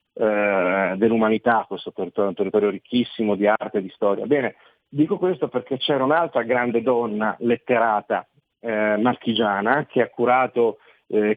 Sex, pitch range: male, 110-125 Hz